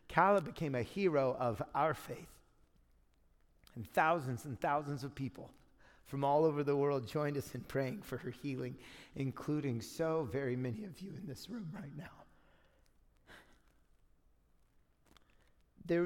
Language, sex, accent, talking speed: English, male, American, 140 wpm